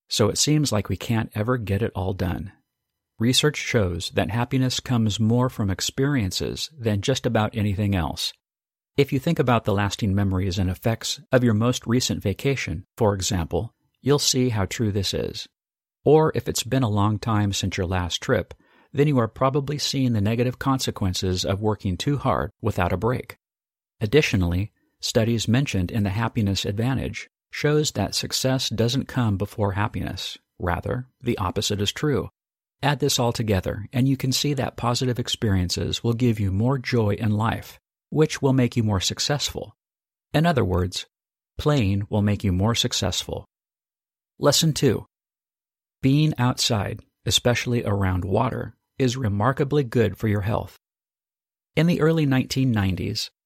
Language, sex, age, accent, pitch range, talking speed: English, male, 50-69, American, 100-130 Hz, 160 wpm